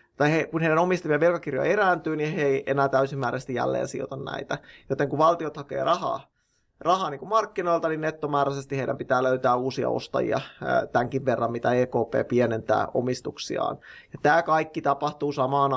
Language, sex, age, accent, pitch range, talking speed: Finnish, male, 20-39, native, 135-155 Hz, 150 wpm